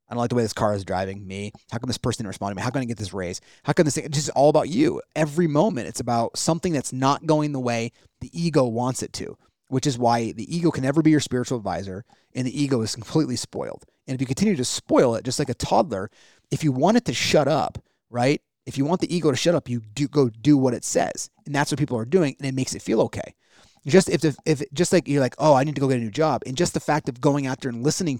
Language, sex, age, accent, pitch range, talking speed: English, male, 30-49, American, 120-155 Hz, 290 wpm